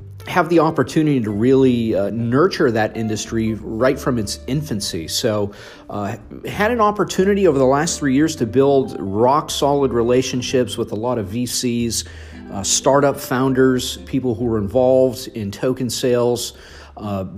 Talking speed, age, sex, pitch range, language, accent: 150 wpm, 40-59, male, 115-140 Hz, English, American